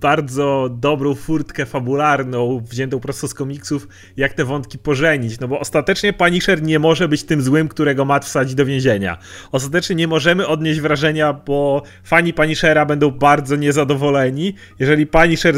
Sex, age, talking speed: male, 30-49, 150 wpm